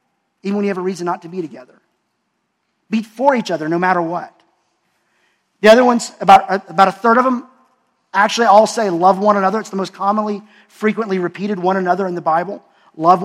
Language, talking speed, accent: English, 200 wpm, American